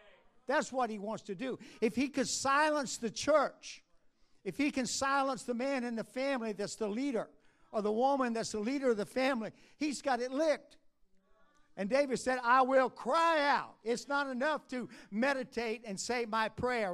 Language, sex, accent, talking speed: English, male, American, 190 wpm